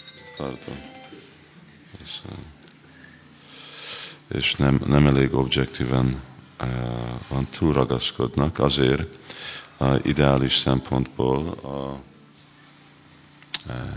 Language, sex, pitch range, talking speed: Hungarian, male, 65-75 Hz, 65 wpm